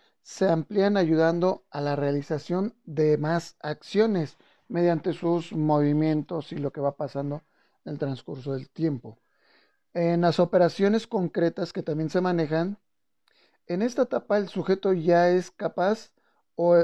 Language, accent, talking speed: Spanish, Mexican, 140 wpm